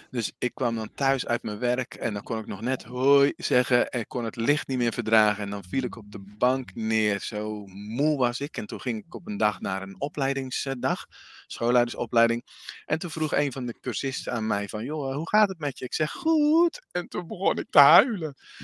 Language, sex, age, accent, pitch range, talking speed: Dutch, male, 40-59, Dutch, 100-135 Hz, 230 wpm